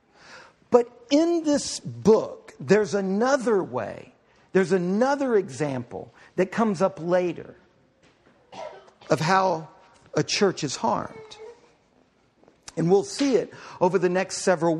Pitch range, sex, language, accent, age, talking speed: 180-255 Hz, male, English, American, 50-69, 115 wpm